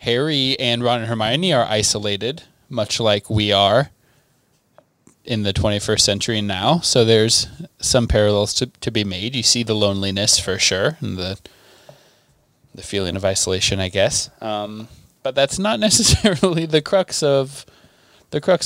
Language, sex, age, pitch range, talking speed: English, male, 20-39, 110-150 Hz, 155 wpm